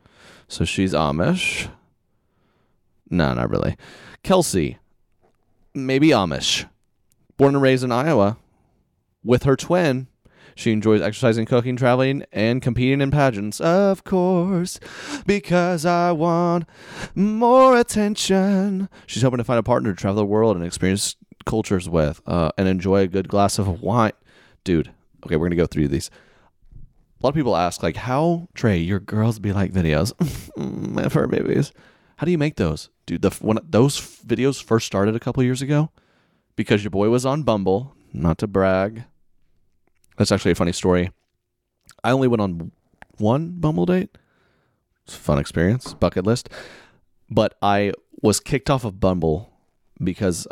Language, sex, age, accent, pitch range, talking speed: English, male, 30-49, American, 95-140 Hz, 155 wpm